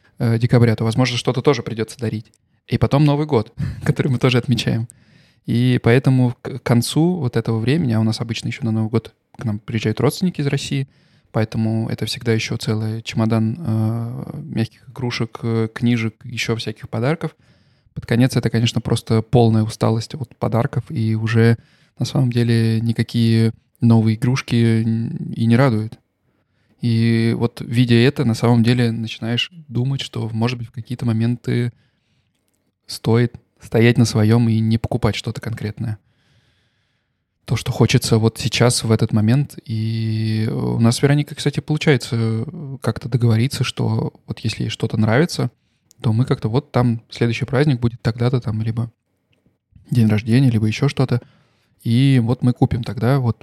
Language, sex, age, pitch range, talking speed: Russian, male, 20-39, 115-130 Hz, 155 wpm